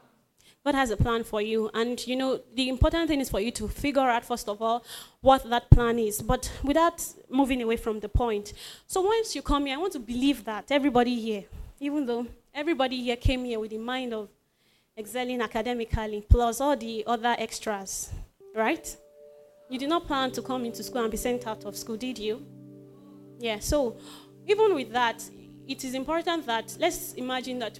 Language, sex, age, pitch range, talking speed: English, female, 20-39, 220-265 Hz, 195 wpm